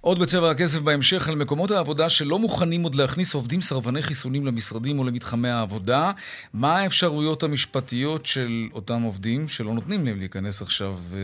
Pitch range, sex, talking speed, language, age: 115-160 Hz, male, 155 wpm, Hebrew, 30-49